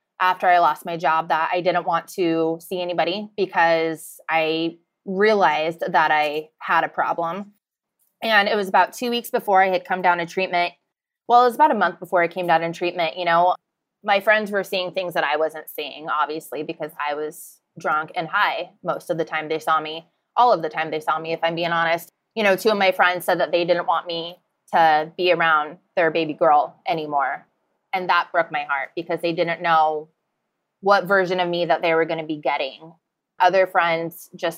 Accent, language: American, English